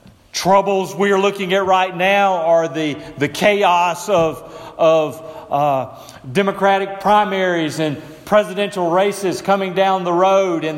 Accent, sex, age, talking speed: American, male, 40-59, 135 wpm